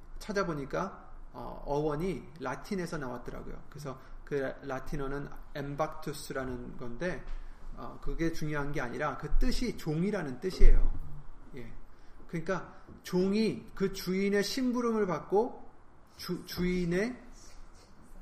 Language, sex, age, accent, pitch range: Korean, male, 30-49, native, 140-195 Hz